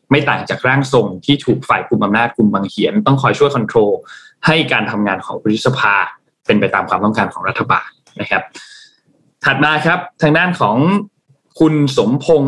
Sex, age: male, 20-39